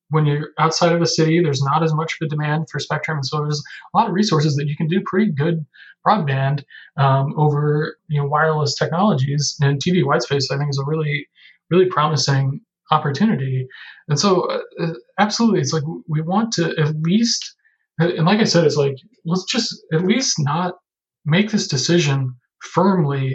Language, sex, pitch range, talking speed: English, male, 145-180 Hz, 190 wpm